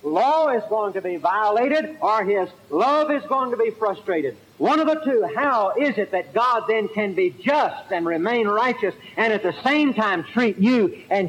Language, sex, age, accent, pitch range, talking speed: English, male, 60-79, American, 180-235 Hz, 200 wpm